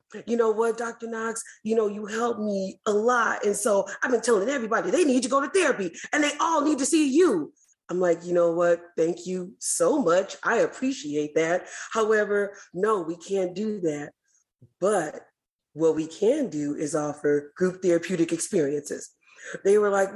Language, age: English, 30-49